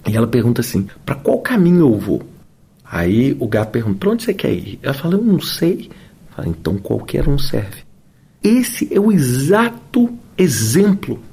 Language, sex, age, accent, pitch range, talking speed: Portuguese, male, 40-59, Brazilian, 155-235 Hz, 180 wpm